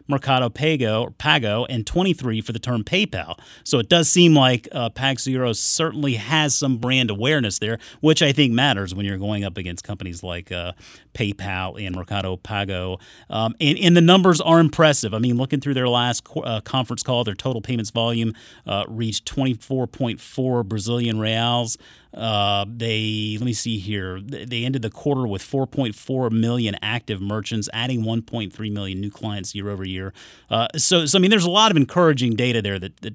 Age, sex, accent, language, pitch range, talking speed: 30-49, male, American, English, 110-140 Hz, 175 wpm